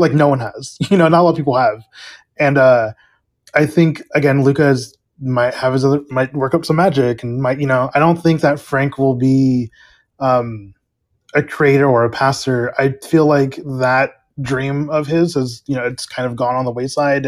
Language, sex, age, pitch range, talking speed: English, male, 20-39, 125-145 Hz, 210 wpm